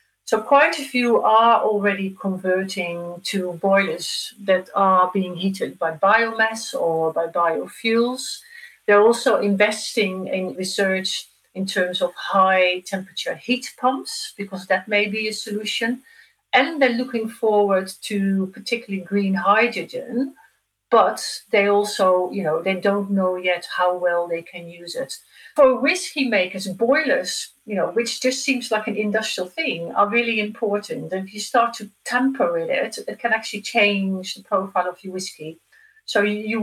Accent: Dutch